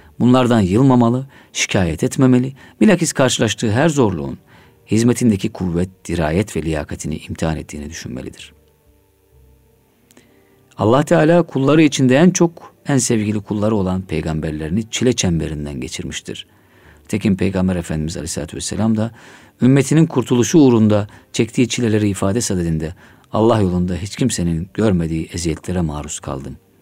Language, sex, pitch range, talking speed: Turkish, male, 80-115 Hz, 115 wpm